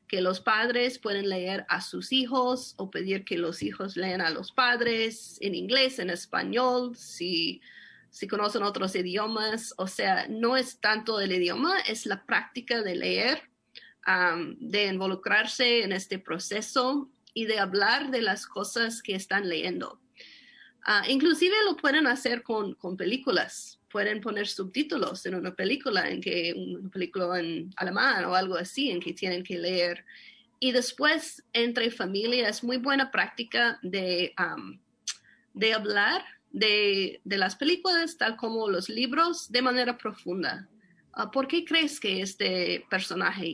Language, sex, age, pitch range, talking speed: Spanish, female, 30-49, 190-250 Hz, 150 wpm